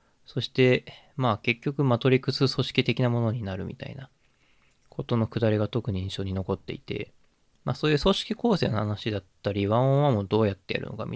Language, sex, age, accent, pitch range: Japanese, male, 20-39, native, 100-140 Hz